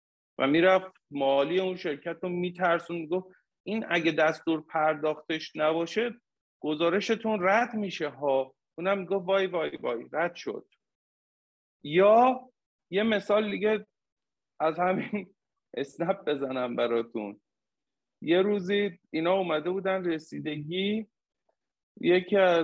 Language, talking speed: Persian, 110 wpm